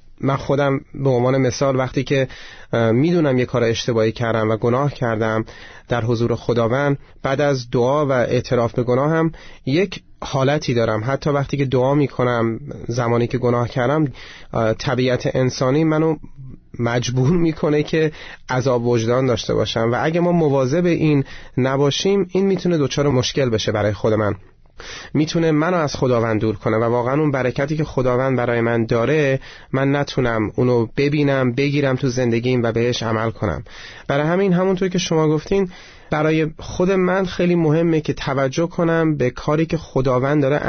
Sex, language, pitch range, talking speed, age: male, Persian, 120-150 Hz, 160 wpm, 30-49